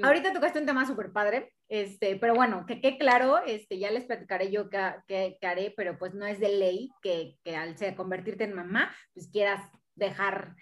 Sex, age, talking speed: female, 30-49, 190 wpm